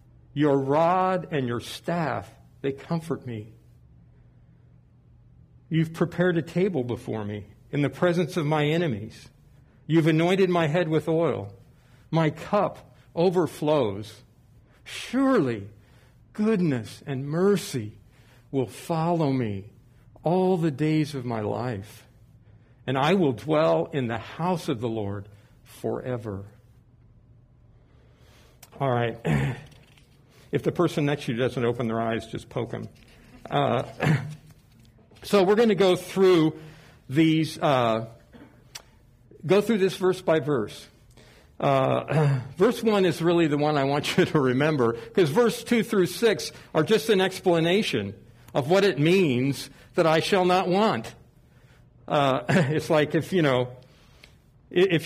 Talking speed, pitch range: 130 wpm, 120-170 Hz